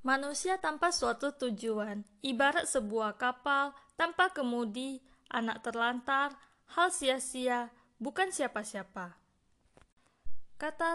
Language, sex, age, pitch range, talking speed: Indonesian, female, 20-39, 215-275 Hz, 90 wpm